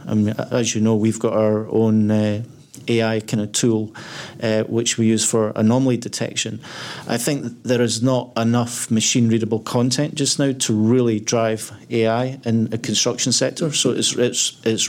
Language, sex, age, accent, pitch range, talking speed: English, male, 40-59, British, 110-120 Hz, 170 wpm